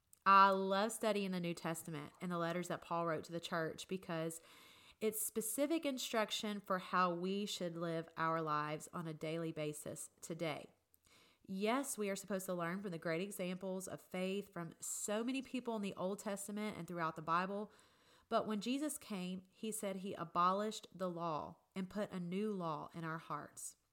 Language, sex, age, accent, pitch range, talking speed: English, female, 30-49, American, 170-210 Hz, 185 wpm